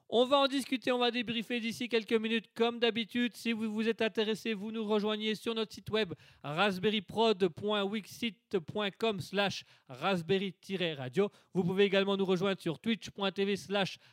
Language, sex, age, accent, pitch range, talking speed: French, male, 30-49, French, 180-225 Hz, 150 wpm